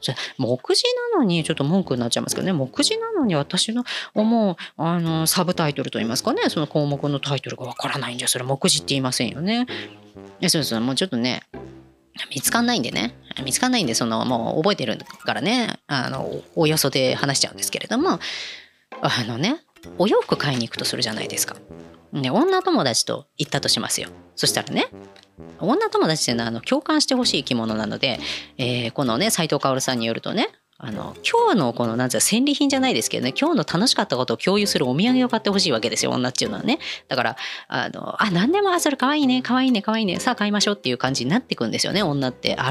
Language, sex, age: Japanese, female, 30-49